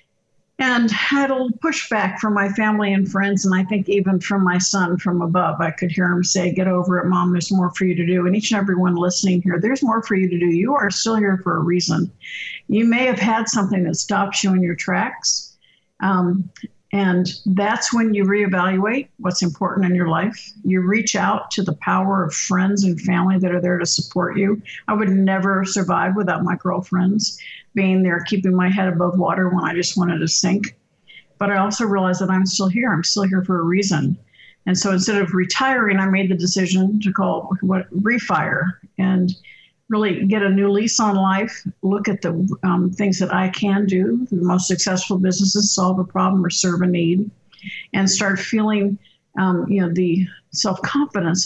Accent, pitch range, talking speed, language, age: American, 180-200 Hz, 200 wpm, English, 50-69